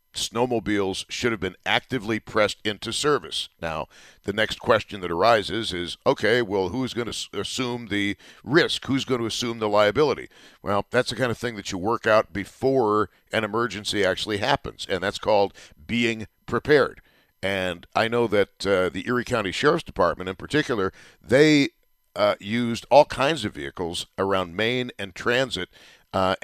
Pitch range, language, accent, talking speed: 100-120 Hz, English, American, 165 wpm